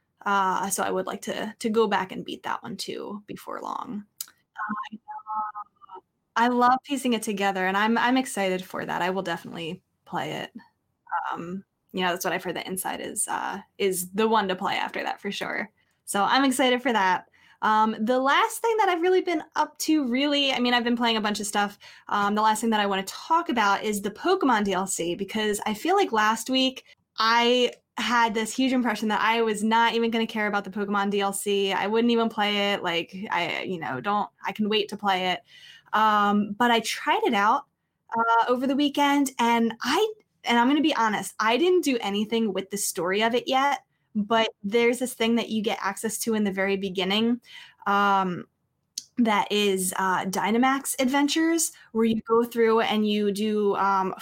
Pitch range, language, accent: 200-250 Hz, English, American